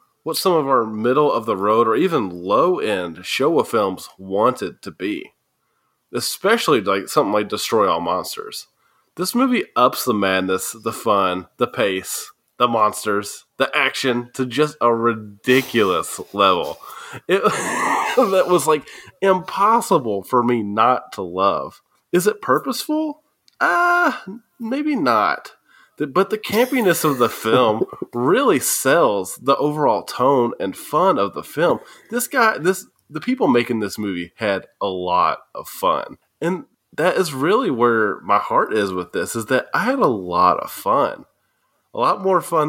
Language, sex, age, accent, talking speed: English, male, 20-39, American, 155 wpm